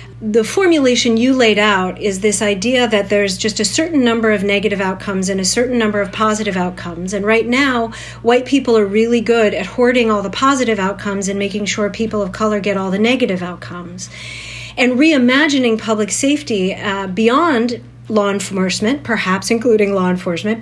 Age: 40-59